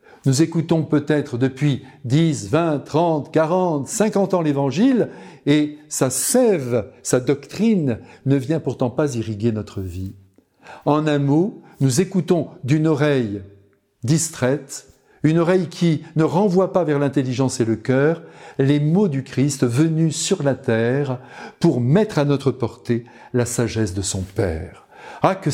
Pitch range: 130-175 Hz